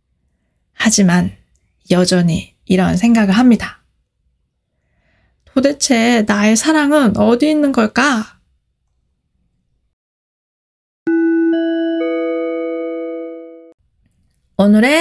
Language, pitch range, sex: Korean, 180-250 Hz, female